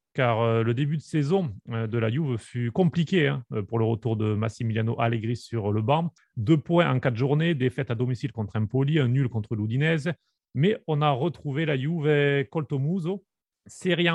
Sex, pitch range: male, 115-155 Hz